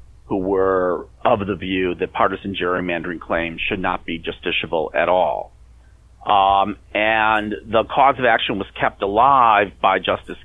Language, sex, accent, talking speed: English, male, American, 150 wpm